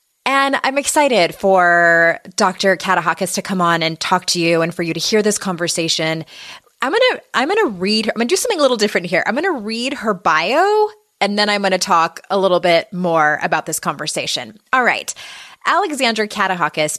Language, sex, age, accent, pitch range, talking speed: English, female, 20-39, American, 175-225 Hz, 195 wpm